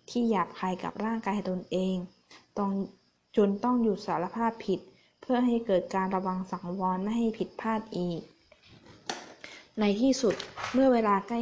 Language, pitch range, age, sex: Thai, 185-225 Hz, 20-39, female